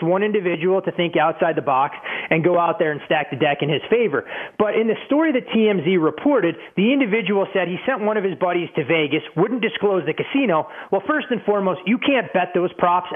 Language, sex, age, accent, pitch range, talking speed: English, male, 30-49, American, 155-210 Hz, 225 wpm